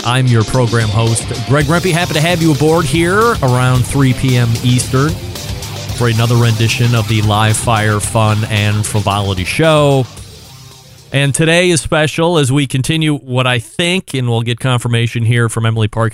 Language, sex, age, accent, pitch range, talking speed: English, male, 30-49, American, 110-135 Hz, 165 wpm